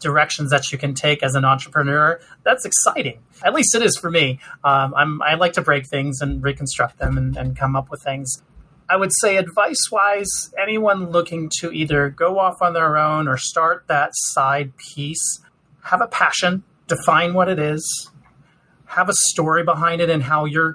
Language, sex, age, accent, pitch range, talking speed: English, male, 30-49, American, 135-165 Hz, 190 wpm